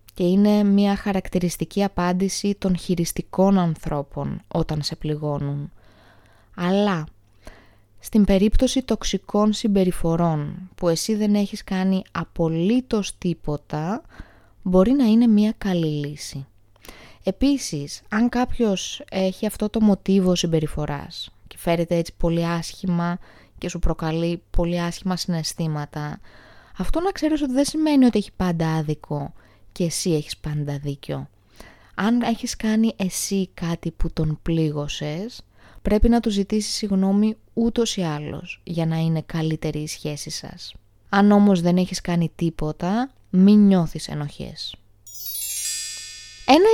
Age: 20-39